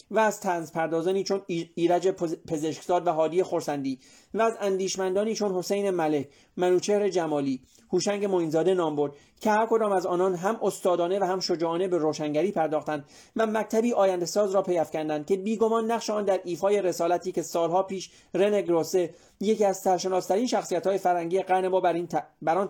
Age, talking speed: 30-49, 160 wpm